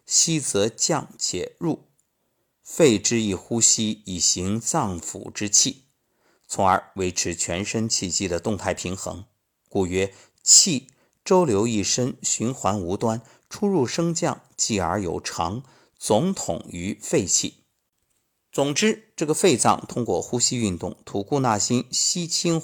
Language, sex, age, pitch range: Chinese, male, 50-69, 95-135 Hz